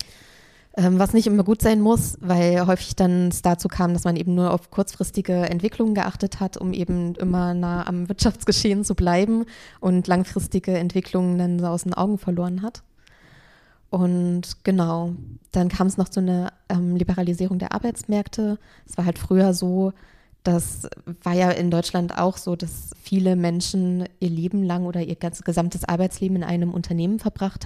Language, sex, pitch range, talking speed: German, female, 175-190 Hz, 165 wpm